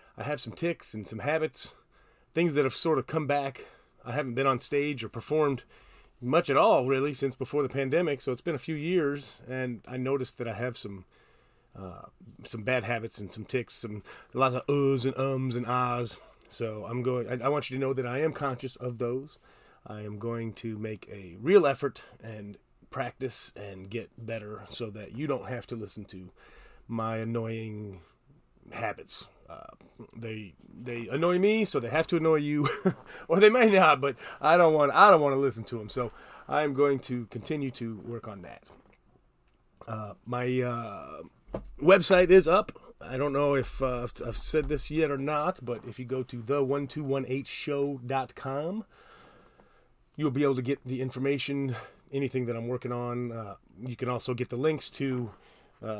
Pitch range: 115-140 Hz